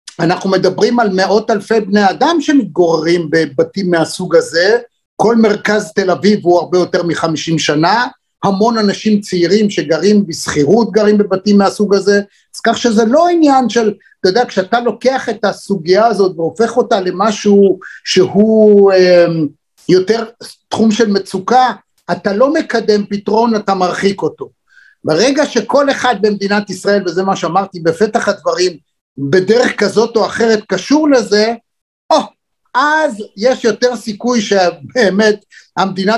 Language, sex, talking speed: Hebrew, male, 135 wpm